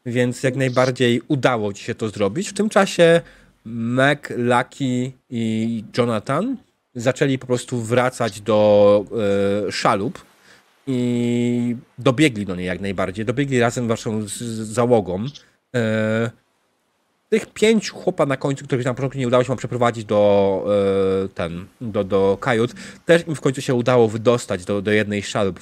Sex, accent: male, native